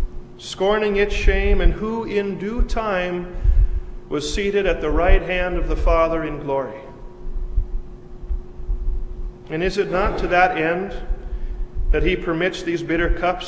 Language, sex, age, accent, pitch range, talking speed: English, male, 40-59, American, 135-195 Hz, 140 wpm